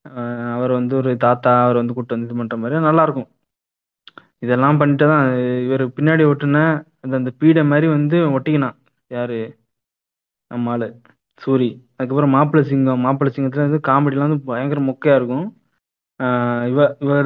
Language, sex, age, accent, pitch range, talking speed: Tamil, male, 20-39, native, 125-145 Hz, 130 wpm